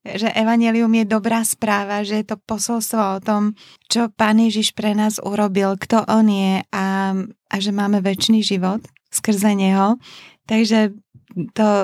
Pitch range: 190-220 Hz